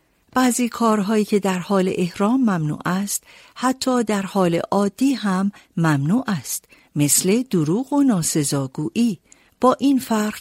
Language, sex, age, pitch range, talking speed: Persian, female, 50-69, 170-235 Hz, 125 wpm